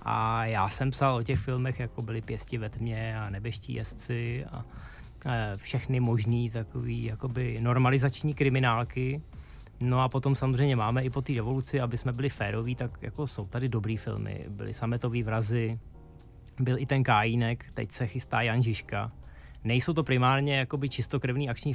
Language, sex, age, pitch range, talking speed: Czech, male, 20-39, 115-135 Hz, 165 wpm